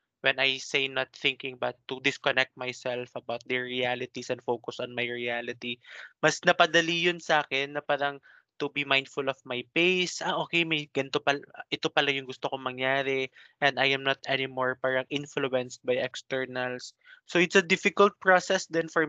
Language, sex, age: Filipino, male, 20-39